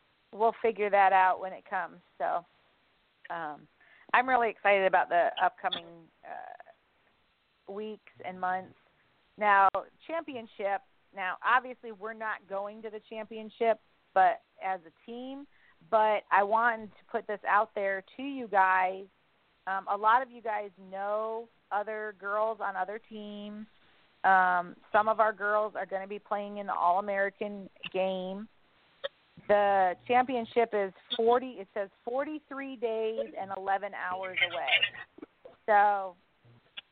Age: 40-59